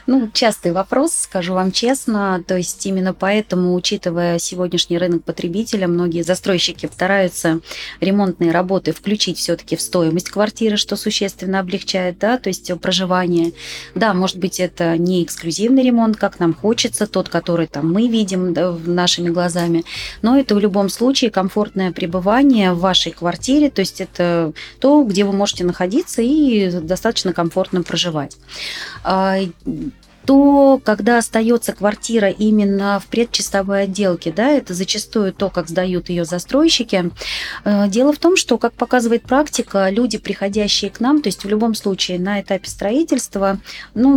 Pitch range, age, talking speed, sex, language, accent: 180-225 Hz, 30-49, 145 wpm, female, Russian, native